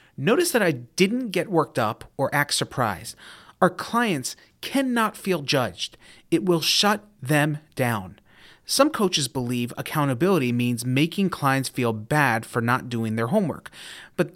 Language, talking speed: English, 145 wpm